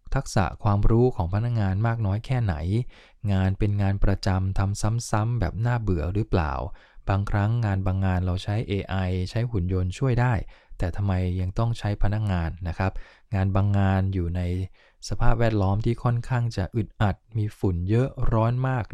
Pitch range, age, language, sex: 95-115 Hz, 20-39, English, male